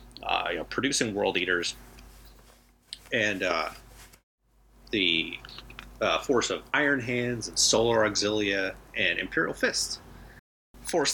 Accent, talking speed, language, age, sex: American, 110 wpm, English, 30-49, male